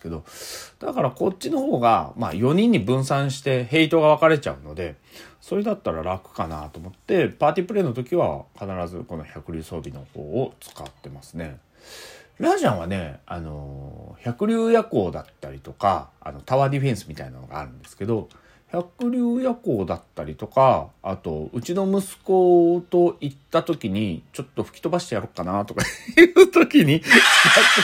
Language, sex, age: Japanese, male, 40-59